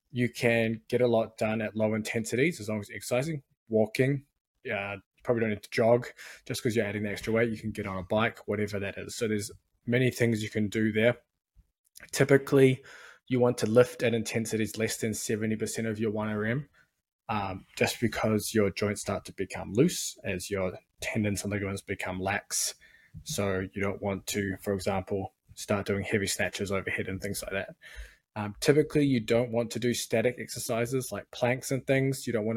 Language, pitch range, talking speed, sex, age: English, 105-120 Hz, 195 wpm, male, 20-39